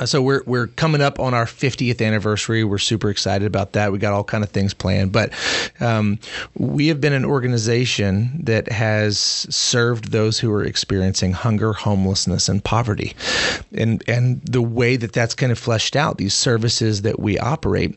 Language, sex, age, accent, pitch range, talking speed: English, male, 30-49, American, 105-130 Hz, 180 wpm